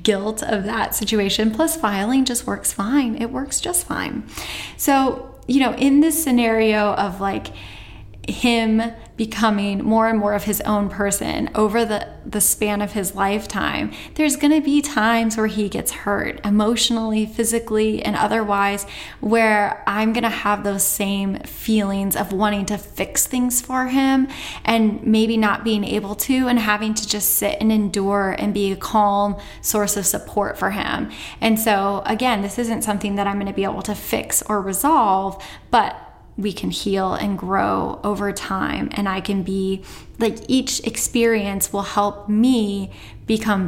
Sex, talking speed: female, 170 wpm